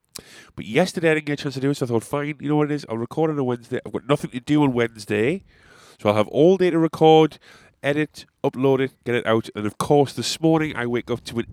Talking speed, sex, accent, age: 280 wpm, male, British, 30-49